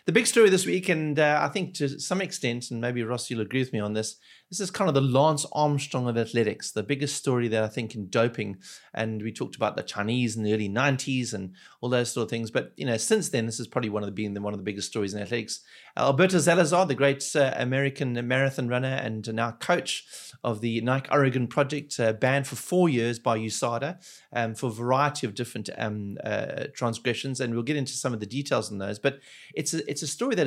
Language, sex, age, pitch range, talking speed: English, male, 30-49, 110-140 Hz, 240 wpm